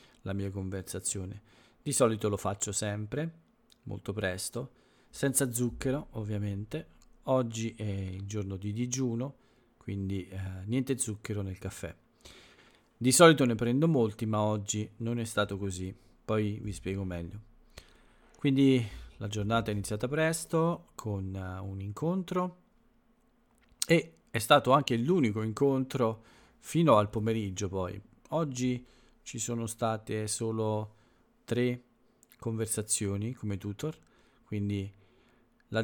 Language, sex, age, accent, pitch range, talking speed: Italian, male, 40-59, native, 100-120 Hz, 115 wpm